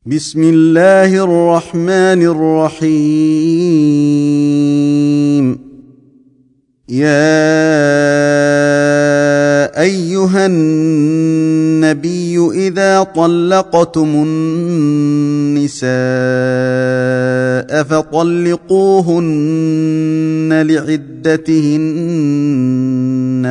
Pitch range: 130-160 Hz